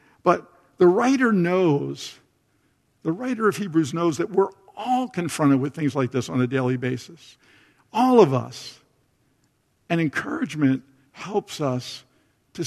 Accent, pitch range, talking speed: American, 140-190 Hz, 135 wpm